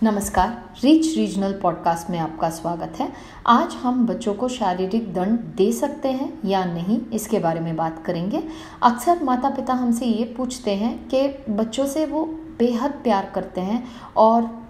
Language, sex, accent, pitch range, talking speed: Telugu, female, native, 195-270 Hz, 165 wpm